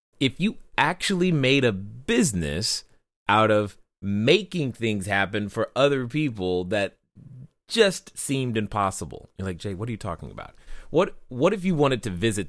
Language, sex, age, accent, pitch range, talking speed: English, male, 30-49, American, 100-150 Hz, 160 wpm